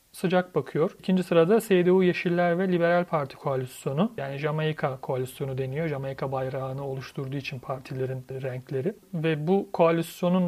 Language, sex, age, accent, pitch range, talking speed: Turkish, male, 40-59, native, 150-185 Hz, 130 wpm